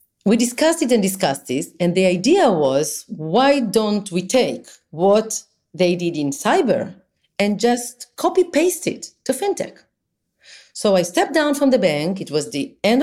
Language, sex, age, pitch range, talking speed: English, female, 40-59, 155-200 Hz, 165 wpm